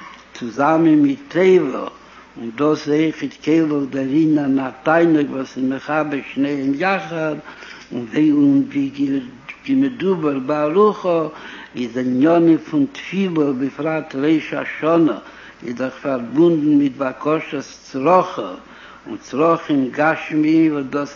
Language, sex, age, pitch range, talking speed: Hebrew, male, 60-79, 135-165 Hz, 100 wpm